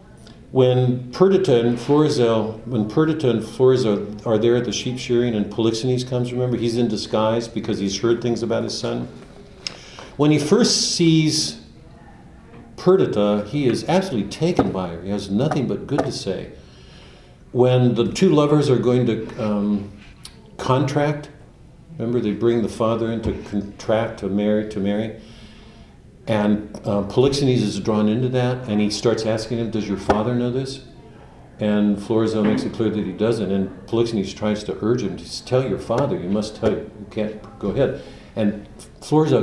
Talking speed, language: 165 wpm, English